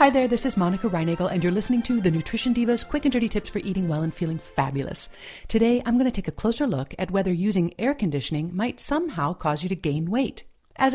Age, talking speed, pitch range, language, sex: 40-59, 240 wpm, 165-225 Hz, English, female